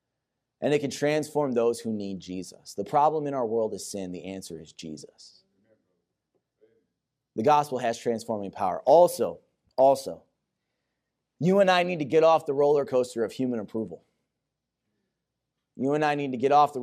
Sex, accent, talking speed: male, American, 170 wpm